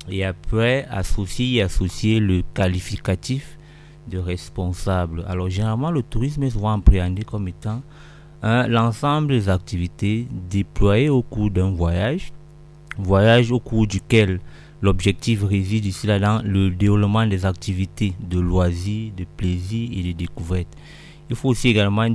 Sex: male